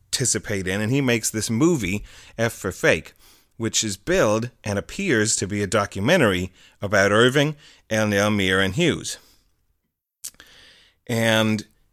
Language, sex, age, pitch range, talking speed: English, male, 30-49, 95-120 Hz, 130 wpm